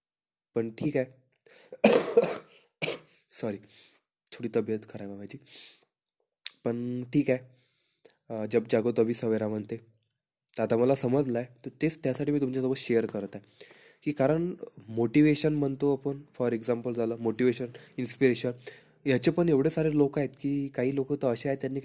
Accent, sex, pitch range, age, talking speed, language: native, male, 115-140 Hz, 20-39, 100 wpm, Marathi